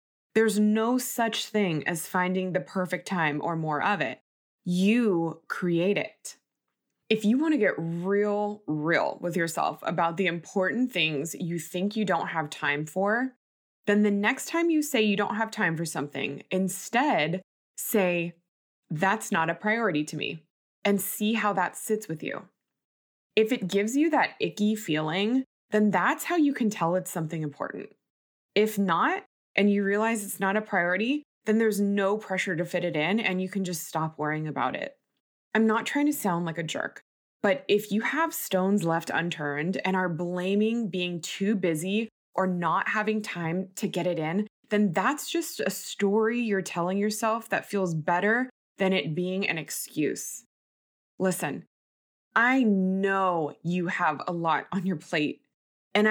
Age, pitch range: 20-39, 170-215 Hz